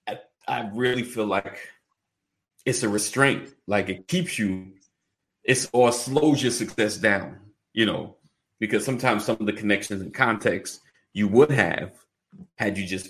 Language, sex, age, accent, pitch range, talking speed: English, male, 30-49, American, 105-125 Hz, 150 wpm